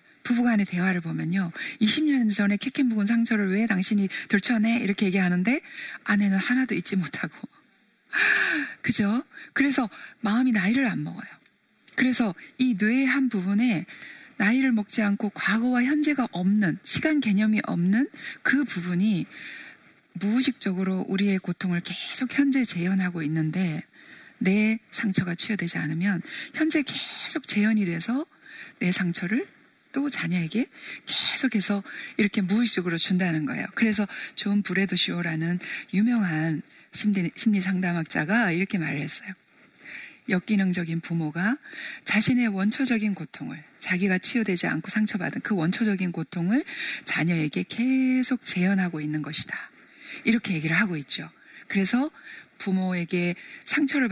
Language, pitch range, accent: Korean, 180-255 Hz, native